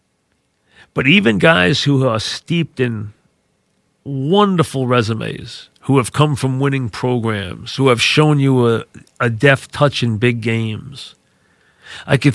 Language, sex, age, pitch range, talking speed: English, male, 40-59, 115-145 Hz, 135 wpm